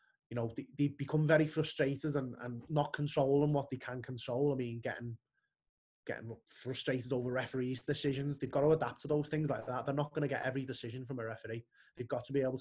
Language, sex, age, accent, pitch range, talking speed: English, male, 20-39, British, 130-150 Hz, 225 wpm